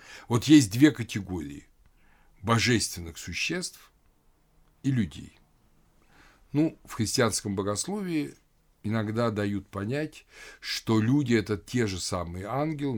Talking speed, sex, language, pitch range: 105 wpm, male, Russian, 95-125 Hz